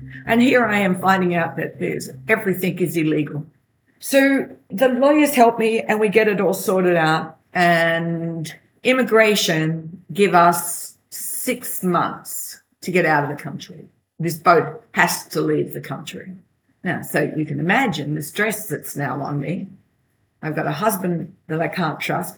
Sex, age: female, 50-69